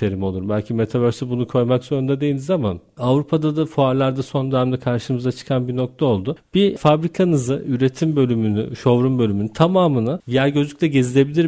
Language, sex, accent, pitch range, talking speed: Turkish, male, native, 130-165 Hz, 150 wpm